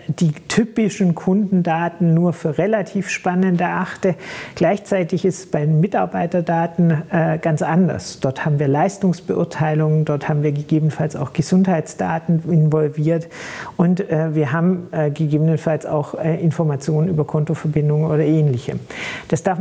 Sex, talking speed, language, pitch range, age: male, 115 wpm, German, 155-185 Hz, 50-69